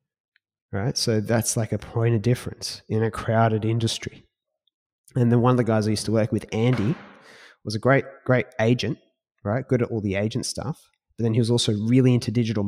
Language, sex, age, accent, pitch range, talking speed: English, male, 20-39, Australian, 105-125 Hz, 210 wpm